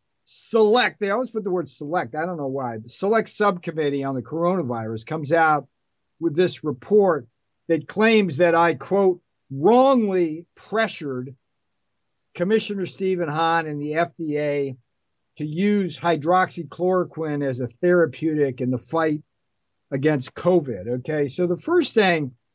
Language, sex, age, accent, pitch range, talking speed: English, male, 50-69, American, 145-195 Hz, 135 wpm